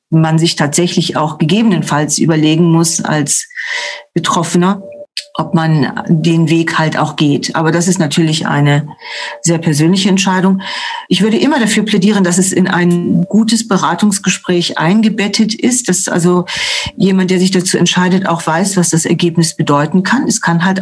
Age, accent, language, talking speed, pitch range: 40-59, German, German, 155 wpm, 170-205 Hz